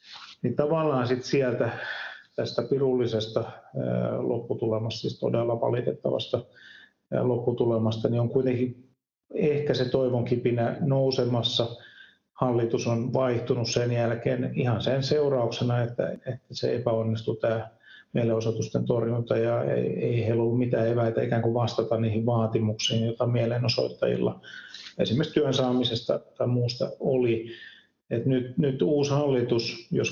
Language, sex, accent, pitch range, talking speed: Finnish, male, native, 115-130 Hz, 115 wpm